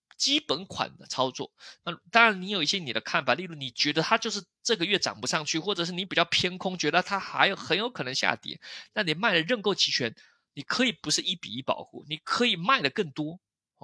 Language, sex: Chinese, male